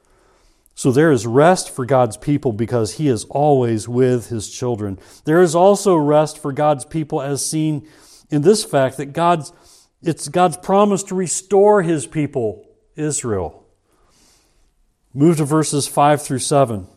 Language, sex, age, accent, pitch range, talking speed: English, male, 40-59, American, 125-170 Hz, 150 wpm